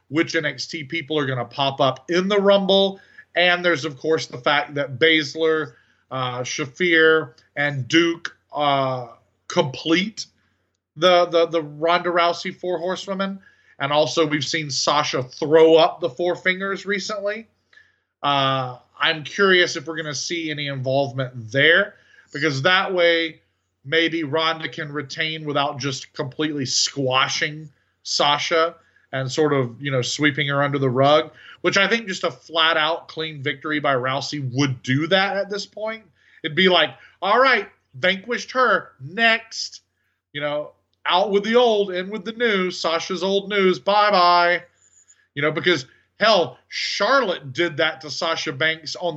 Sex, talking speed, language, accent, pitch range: male, 155 wpm, English, American, 140-180 Hz